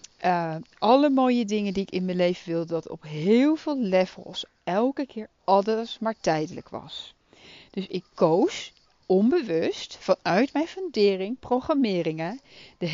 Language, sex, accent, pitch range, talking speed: Dutch, female, Dutch, 185-255 Hz, 140 wpm